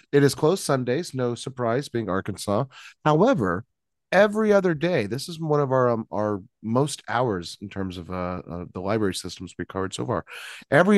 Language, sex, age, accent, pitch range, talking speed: English, male, 30-49, American, 100-145 Hz, 185 wpm